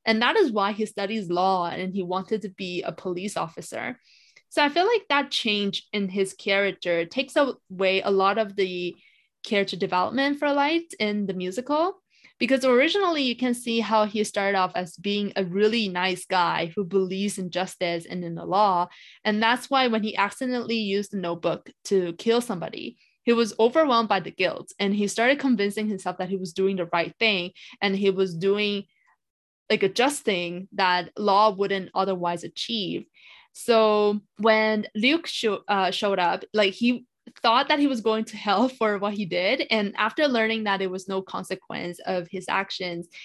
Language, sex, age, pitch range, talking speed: English, female, 20-39, 185-230 Hz, 180 wpm